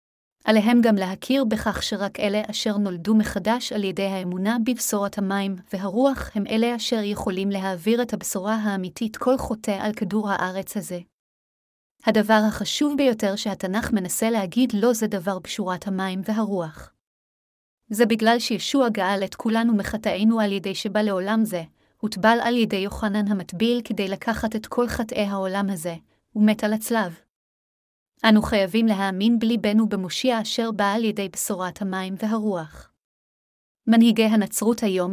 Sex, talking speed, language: female, 145 wpm, Hebrew